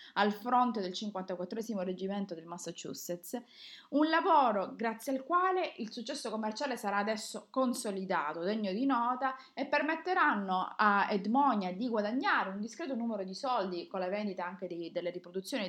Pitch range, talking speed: 195-265 Hz, 145 wpm